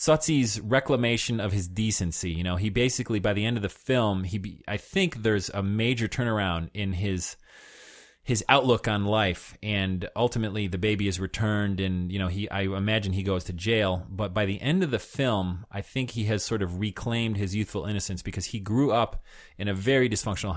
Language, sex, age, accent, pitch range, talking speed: English, male, 30-49, American, 95-115 Hz, 205 wpm